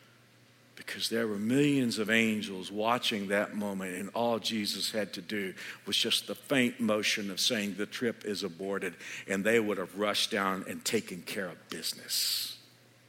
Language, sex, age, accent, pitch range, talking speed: English, male, 60-79, American, 90-125 Hz, 170 wpm